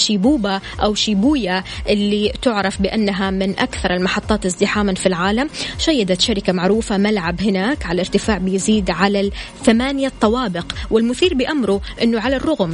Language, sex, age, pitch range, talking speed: Arabic, female, 20-39, 195-245 Hz, 130 wpm